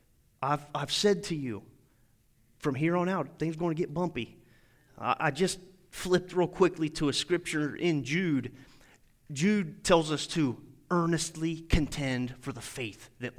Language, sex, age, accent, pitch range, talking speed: English, male, 30-49, American, 120-155 Hz, 160 wpm